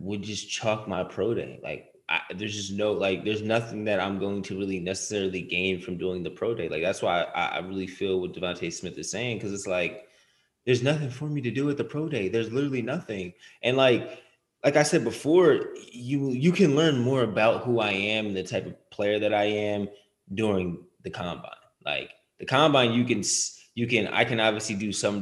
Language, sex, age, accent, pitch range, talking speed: English, male, 20-39, American, 95-115 Hz, 220 wpm